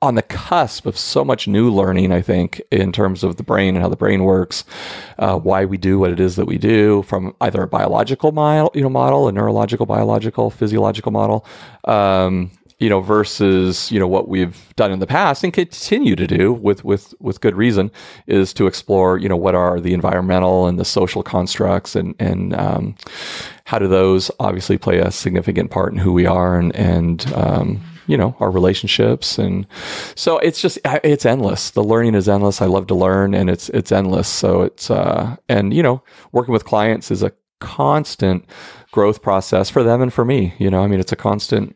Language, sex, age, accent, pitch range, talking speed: English, male, 40-59, American, 95-115 Hz, 205 wpm